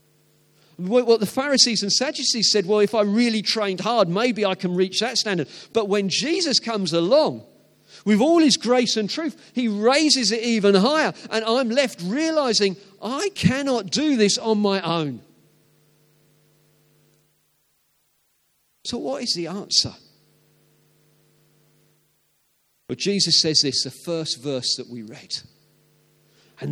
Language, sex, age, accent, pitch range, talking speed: English, male, 40-59, British, 150-200 Hz, 135 wpm